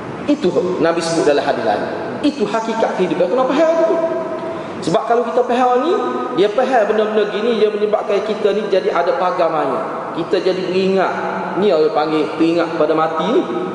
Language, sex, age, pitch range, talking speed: Malay, male, 20-39, 170-230 Hz, 175 wpm